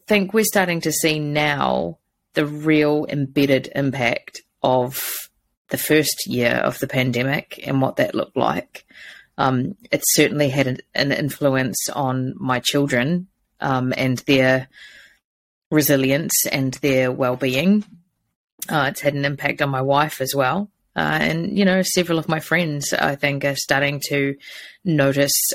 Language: English